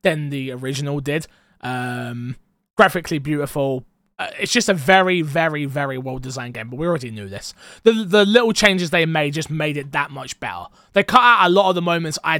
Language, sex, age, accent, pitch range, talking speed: English, male, 20-39, British, 140-190 Hz, 210 wpm